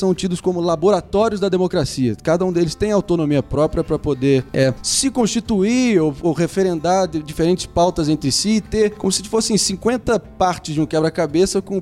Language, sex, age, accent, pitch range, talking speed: Portuguese, male, 20-39, Brazilian, 130-180 Hz, 175 wpm